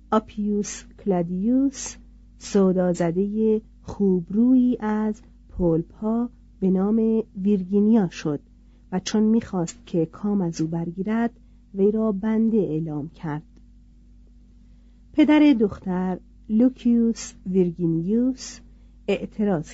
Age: 50-69